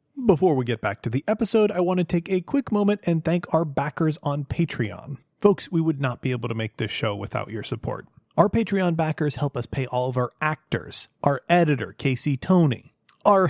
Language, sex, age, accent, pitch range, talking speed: English, male, 30-49, American, 120-165 Hz, 215 wpm